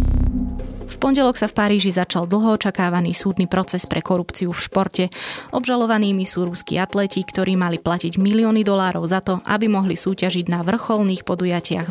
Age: 20-39